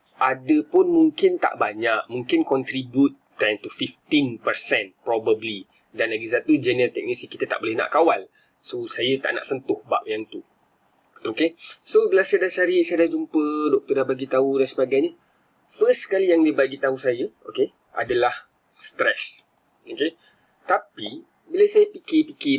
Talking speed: 155 wpm